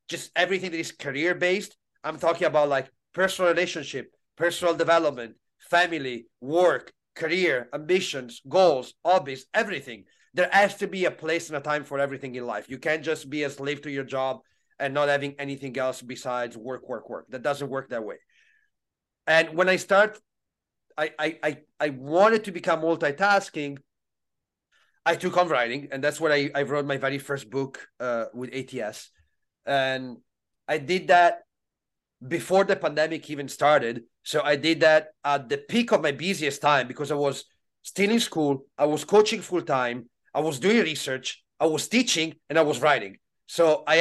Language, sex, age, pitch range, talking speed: Italian, male, 30-49, 140-180 Hz, 175 wpm